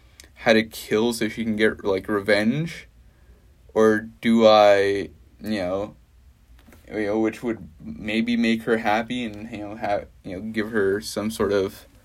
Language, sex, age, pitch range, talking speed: English, male, 20-39, 80-115 Hz, 165 wpm